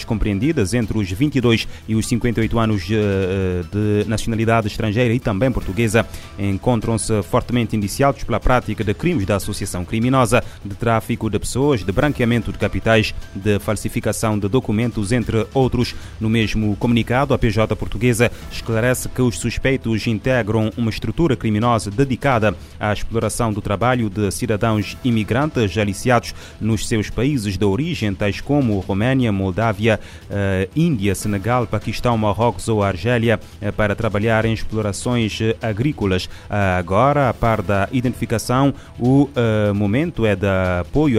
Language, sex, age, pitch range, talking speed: Portuguese, male, 30-49, 105-120 Hz, 135 wpm